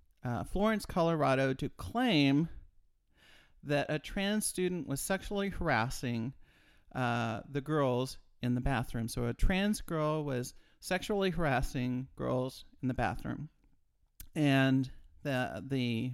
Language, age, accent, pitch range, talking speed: English, 40-59, American, 125-165 Hz, 115 wpm